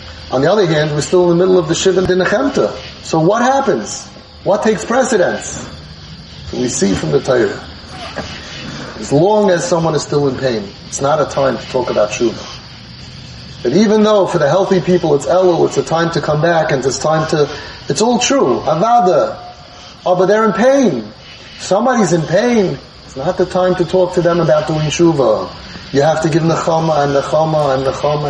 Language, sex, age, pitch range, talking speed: English, male, 30-49, 150-195 Hz, 195 wpm